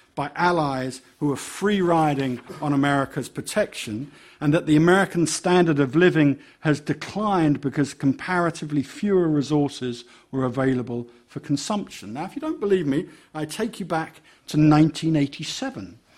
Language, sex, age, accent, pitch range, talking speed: English, male, 50-69, British, 140-185 Hz, 135 wpm